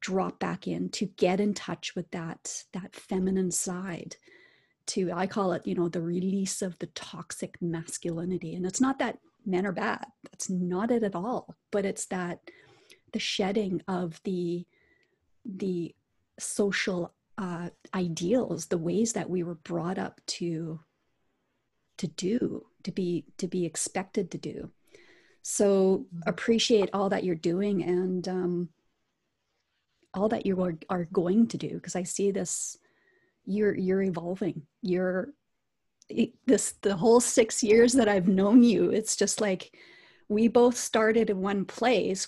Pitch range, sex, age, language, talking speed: 180-220 Hz, female, 30-49, English, 150 wpm